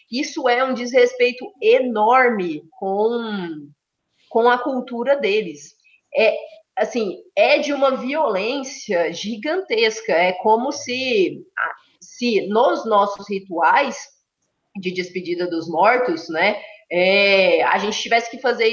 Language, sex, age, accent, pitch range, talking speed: Portuguese, female, 20-39, Brazilian, 190-270 Hz, 105 wpm